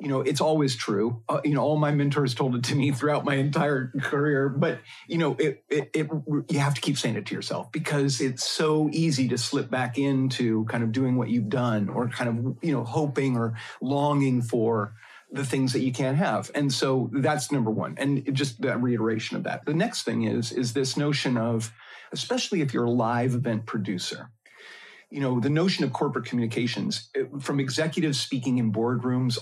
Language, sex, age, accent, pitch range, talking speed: English, male, 40-59, American, 115-145 Hz, 205 wpm